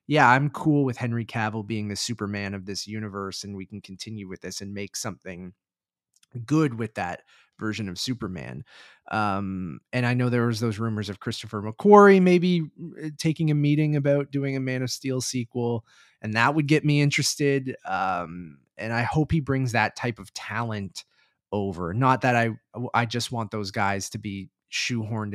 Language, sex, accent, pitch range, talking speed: English, male, American, 100-125 Hz, 180 wpm